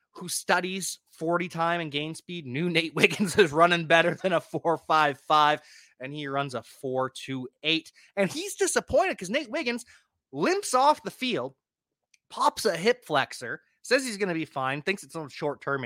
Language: English